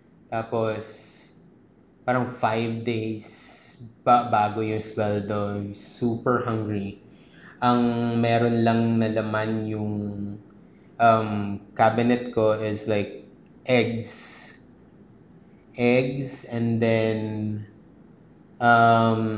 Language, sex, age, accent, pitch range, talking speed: English, male, 20-39, Filipino, 105-120 Hz, 80 wpm